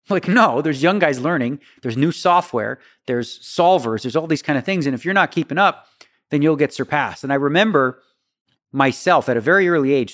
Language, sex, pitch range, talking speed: English, male, 130-170 Hz, 215 wpm